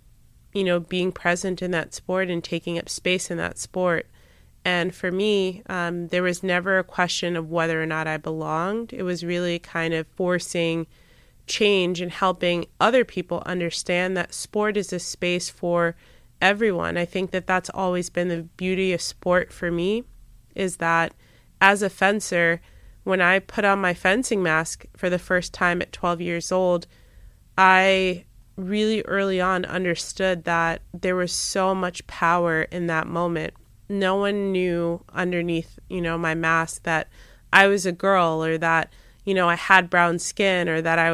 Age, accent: 20-39, American